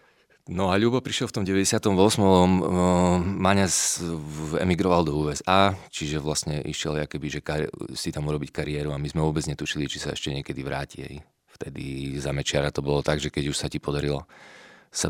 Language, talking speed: Slovak, 165 wpm